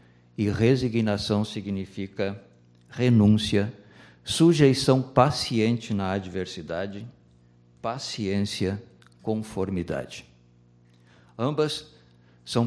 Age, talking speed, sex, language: 50-69, 55 wpm, male, Portuguese